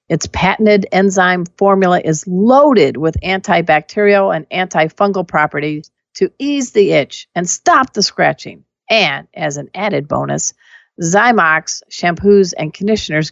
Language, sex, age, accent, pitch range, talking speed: English, female, 50-69, American, 170-210 Hz, 125 wpm